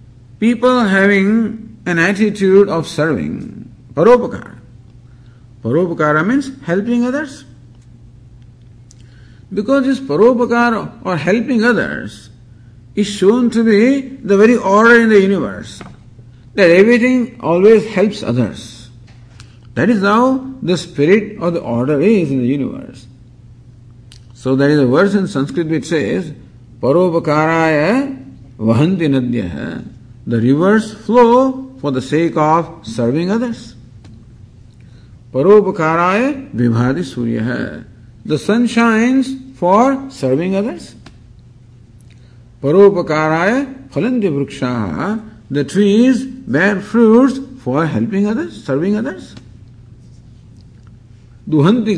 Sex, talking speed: male, 105 wpm